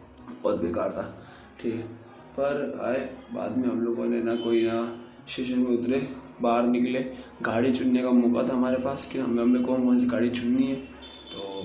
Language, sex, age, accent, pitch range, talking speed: Hindi, male, 20-39, native, 120-145 Hz, 175 wpm